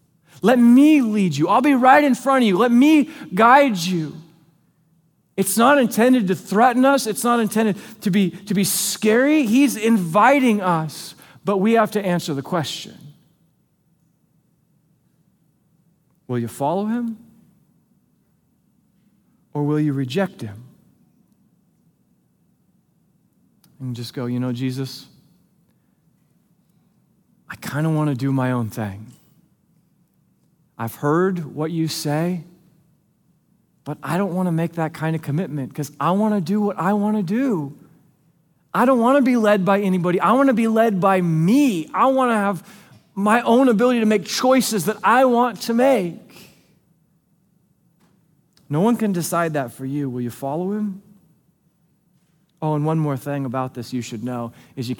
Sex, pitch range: male, 155-215 Hz